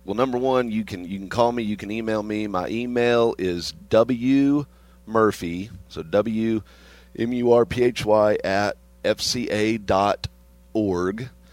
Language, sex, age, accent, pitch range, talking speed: English, male, 40-59, American, 85-105 Hz, 165 wpm